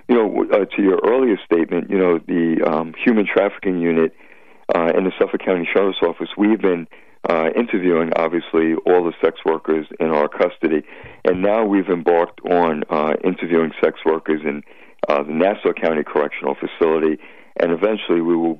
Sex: male